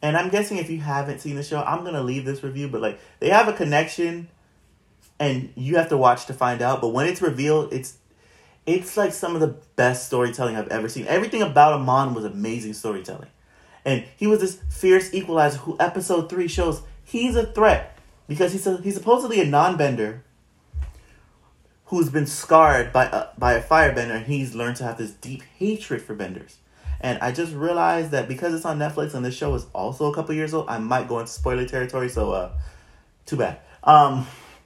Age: 30-49